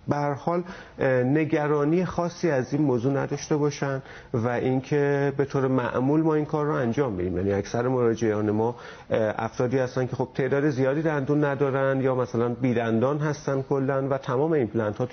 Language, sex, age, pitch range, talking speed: Persian, male, 40-59, 120-155 Hz, 165 wpm